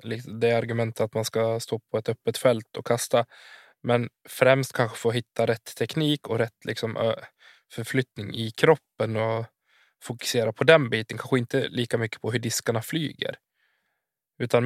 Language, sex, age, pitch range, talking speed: Swedish, male, 20-39, 110-130 Hz, 160 wpm